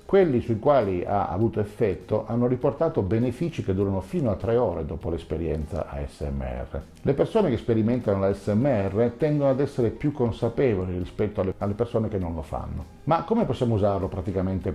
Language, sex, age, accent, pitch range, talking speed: Italian, male, 50-69, native, 90-120 Hz, 165 wpm